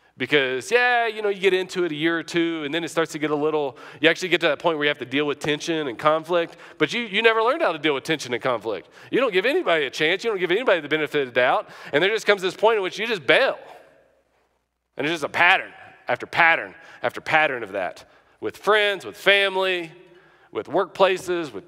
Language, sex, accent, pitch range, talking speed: English, male, American, 120-185 Hz, 250 wpm